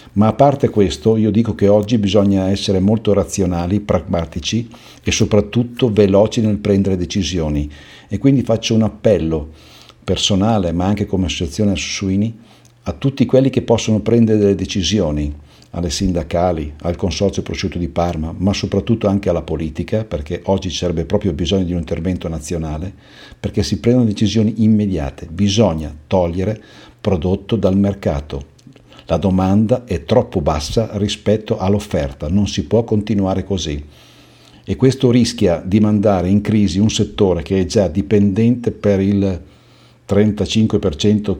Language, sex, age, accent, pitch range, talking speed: Italian, male, 60-79, native, 90-110 Hz, 140 wpm